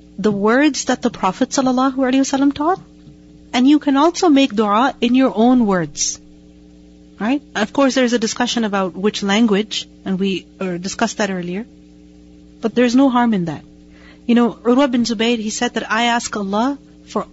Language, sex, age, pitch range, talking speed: English, female, 40-59, 175-245 Hz, 175 wpm